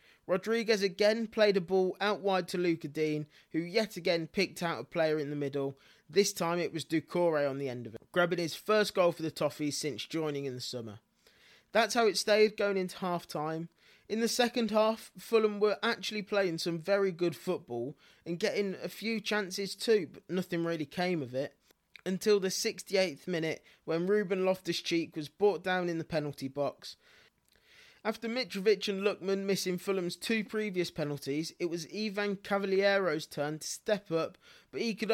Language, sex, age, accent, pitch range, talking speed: English, male, 20-39, British, 165-210 Hz, 185 wpm